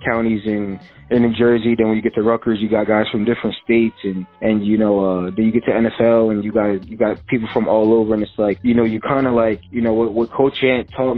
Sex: male